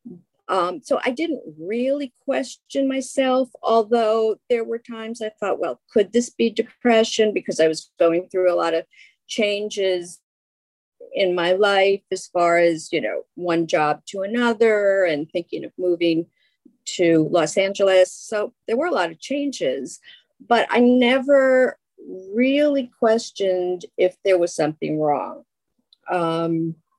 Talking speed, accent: 140 wpm, American